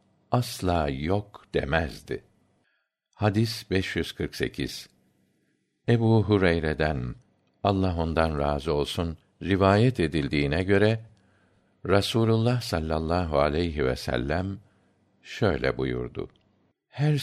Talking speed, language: 75 wpm, Turkish